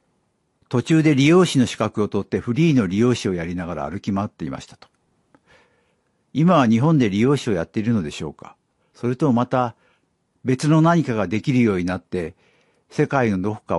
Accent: native